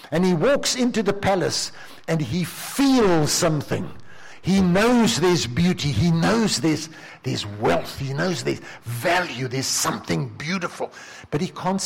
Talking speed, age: 145 wpm, 60-79